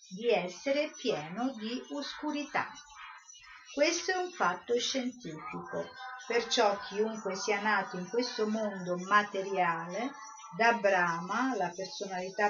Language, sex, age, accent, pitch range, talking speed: Italian, female, 50-69, native, 185-255 Hz, 105 wpm